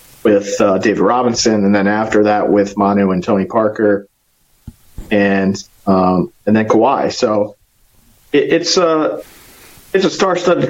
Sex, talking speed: male, 140 wpm